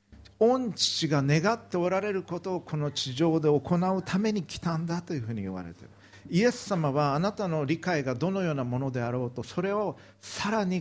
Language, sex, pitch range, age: Japanese, male, 105-160 Hz, 50-69